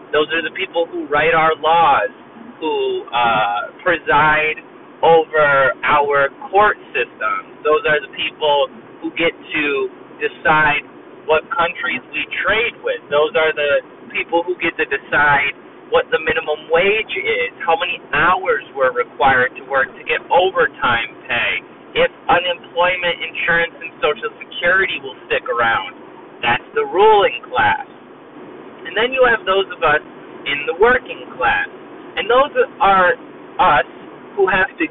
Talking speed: 145 wpm